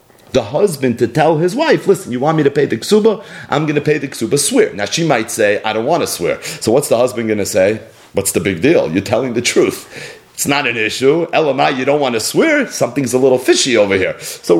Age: 30-49